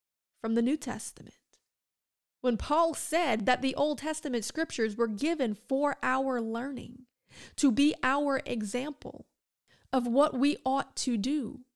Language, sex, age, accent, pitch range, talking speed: English, female, 30-49, American, 235-280 Hz, 140 wpm